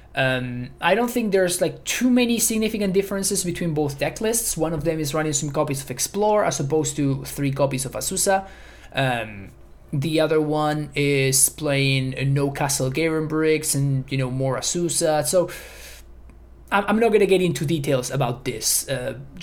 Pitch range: 130-175 Hz